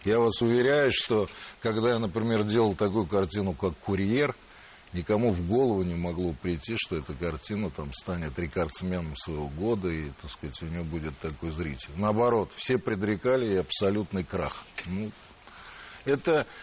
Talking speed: 150 wpm